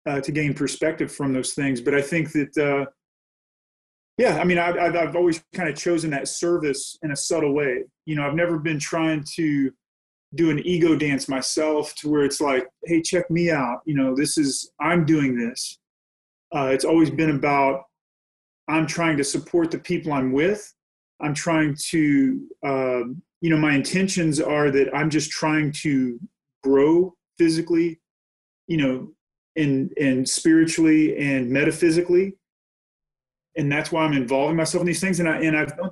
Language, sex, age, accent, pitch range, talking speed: English, male, 30-49, American, 135-170 Hz, 175 wpm